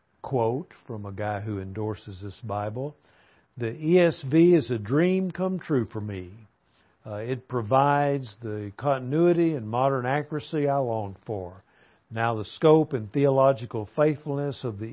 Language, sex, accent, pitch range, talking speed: English, male, American, 110-145 Hz, 145 wpm